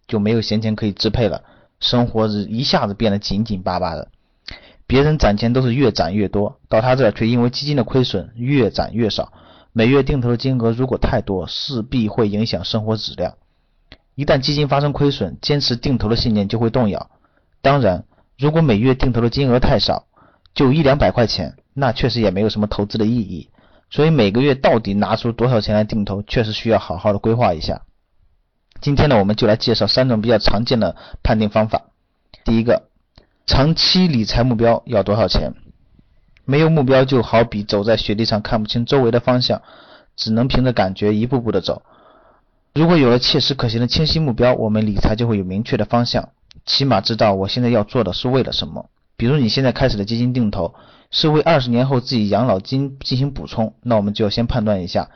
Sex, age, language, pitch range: male, 30-49, Chinese, 105-130 Hz